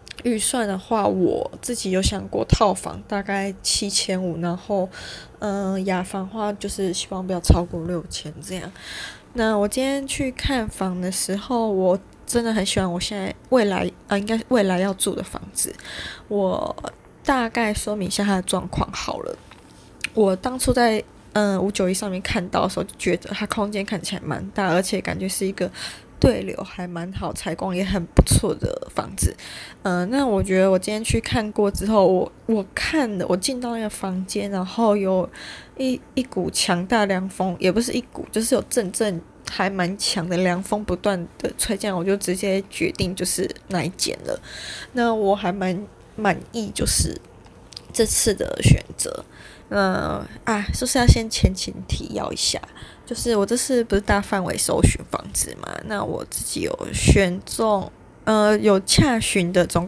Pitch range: 185-220 Hz